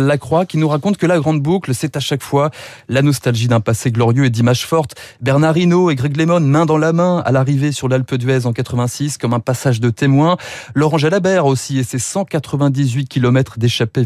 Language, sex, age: French, male, 30-49